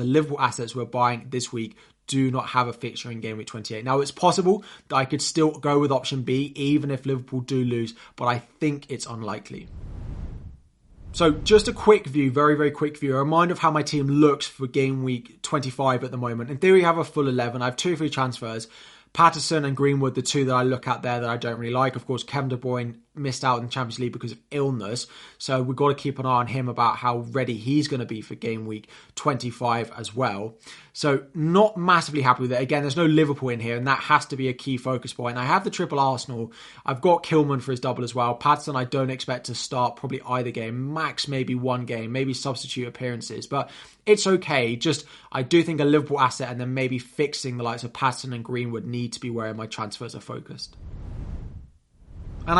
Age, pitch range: 20-39, 125-150 Hz